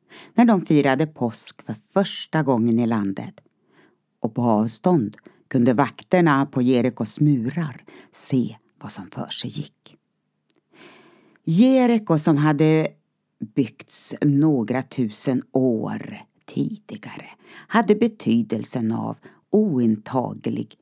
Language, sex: Swedish, female